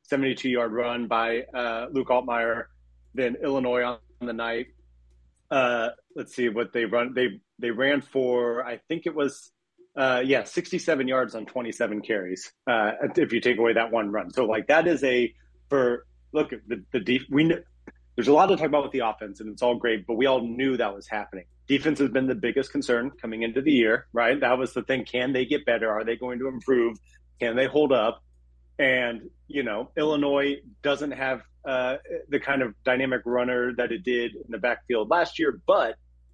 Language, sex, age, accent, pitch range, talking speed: English, male, 30-49, American, 110-135 Hz, 200 wpm